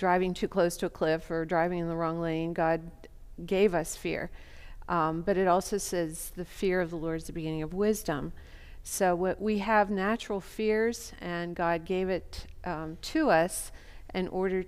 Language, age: English, 50-69